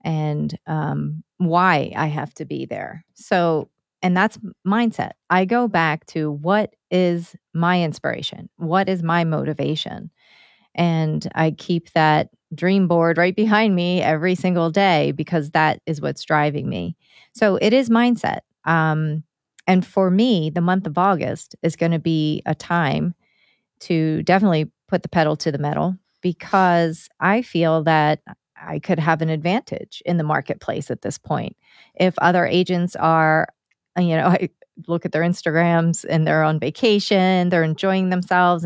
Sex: female